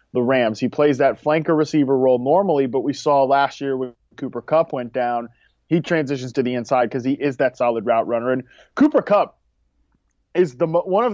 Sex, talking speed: male, 205 wpm